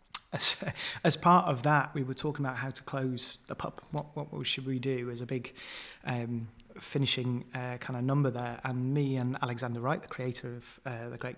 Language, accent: English, British